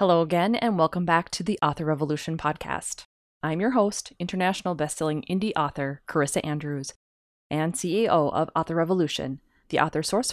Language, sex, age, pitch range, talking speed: English, female, 20-39, 150-185 Hz, 155 wpm